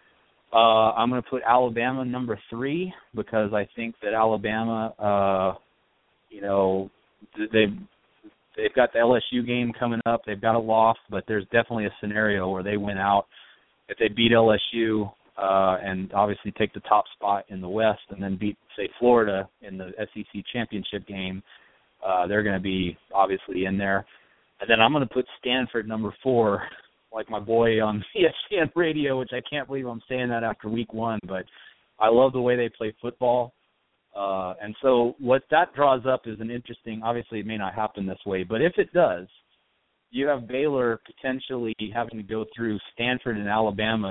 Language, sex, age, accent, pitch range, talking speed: English, male, 30-49, American, 100-125 Hz, 180 wpm